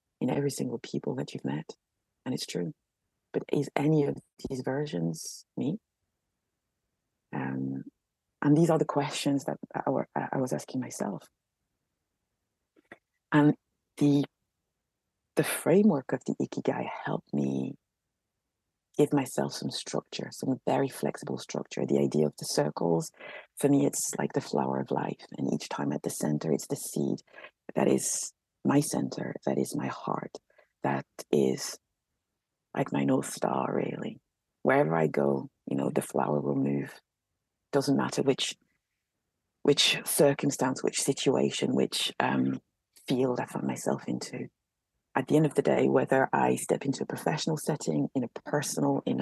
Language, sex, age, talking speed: English, female, 30-49, 150 wpm